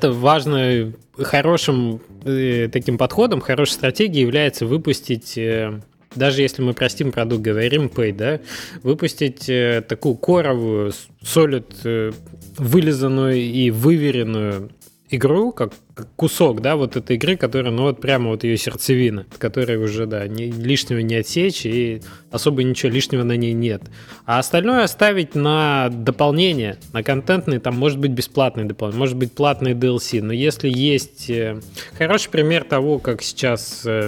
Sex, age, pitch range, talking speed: male, 20-39, 115-140 Hz, 130 wpm